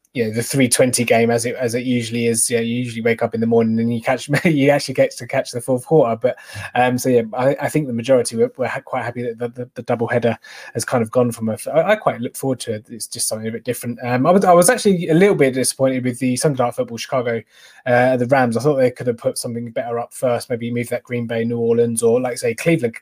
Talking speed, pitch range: 280 wpm, 120-135 Hz